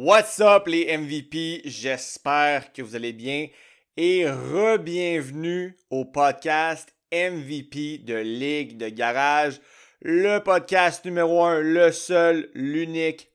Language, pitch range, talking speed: French, 135-180 Hz, 110 wpm